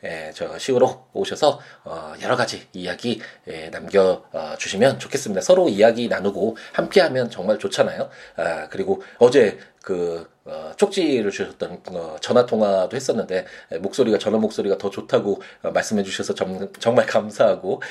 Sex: male